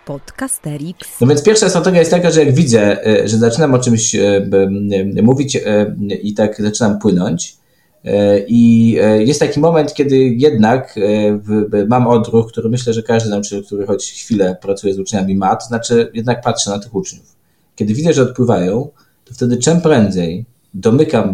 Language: Polish